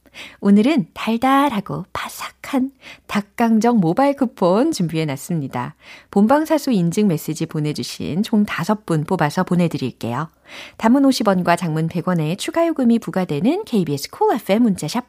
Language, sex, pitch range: Korean, female, 160-270 Hz